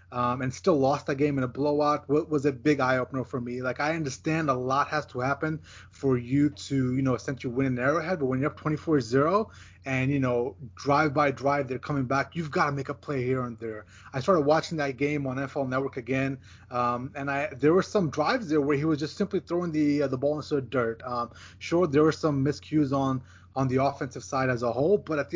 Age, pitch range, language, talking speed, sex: 20-39, 125-150 Hz, English, 245 wpm, male